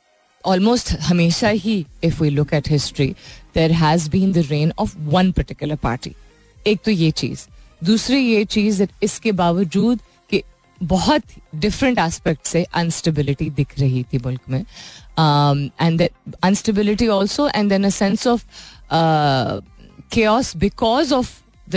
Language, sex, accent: Hindi, female, native